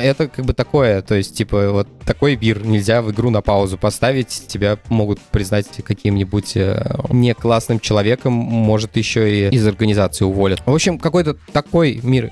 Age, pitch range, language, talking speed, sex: 20-39, 110-130 Hz, Russian, 170 wpm, male